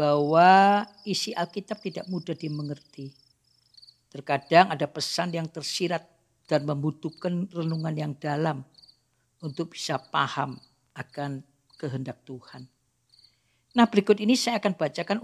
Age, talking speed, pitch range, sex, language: 50-69, 110 wpm, 130-175 Hz, female, Indonesian